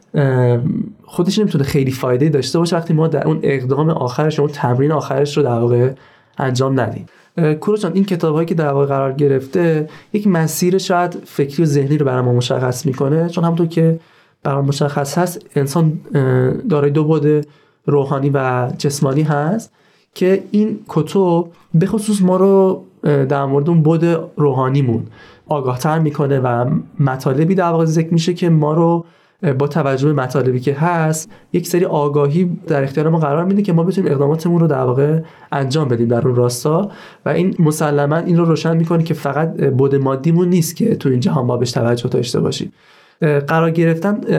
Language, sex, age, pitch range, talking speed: Persian, male, 30-49, 140-175 Hz, 165 wpm